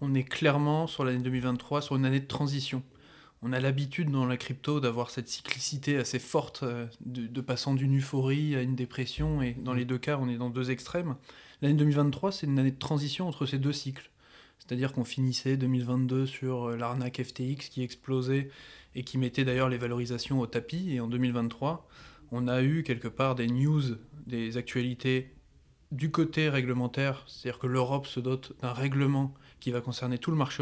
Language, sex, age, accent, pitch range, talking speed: French, male, 20-39, French, 125-140 Hz, 190 wpm